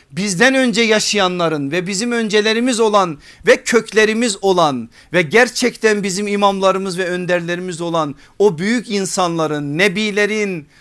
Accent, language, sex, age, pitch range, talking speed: native, Turkish, male, 50-69, 160-205 Hz, 115 wpm